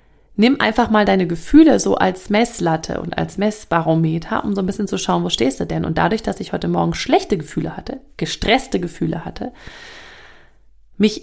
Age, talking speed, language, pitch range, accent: 30-49, 180 wpm, German, 160-225 Hz, German